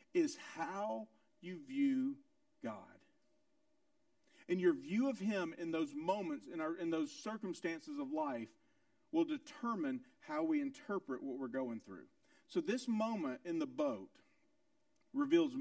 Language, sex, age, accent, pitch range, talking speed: English, male, 50-69, American, 240-305 Hz, 140 wpm